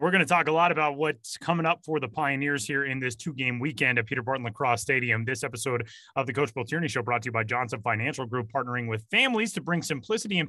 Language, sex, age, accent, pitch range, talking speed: English, male, 30-49, American, 125-155 Hz, 265 wpm